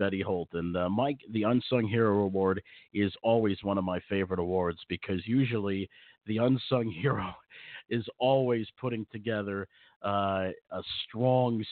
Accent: American